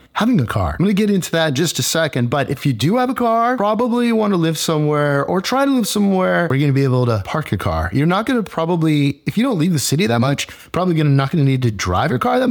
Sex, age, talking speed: male, 30-49, 315 wpm